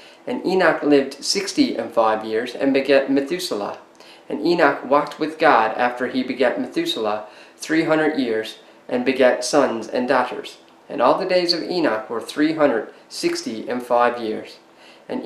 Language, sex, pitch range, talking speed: English, male, 120-155 Hz, 160 wpm